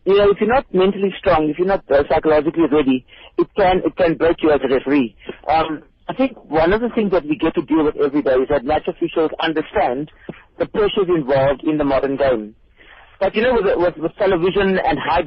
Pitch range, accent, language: 150-195 Hz, Indian, English